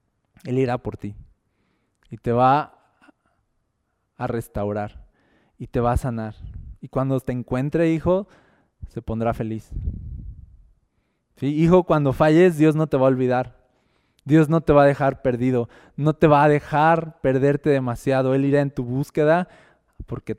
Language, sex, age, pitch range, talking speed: Spanish, male, 20-39, 125-175 Hz, 155 wpm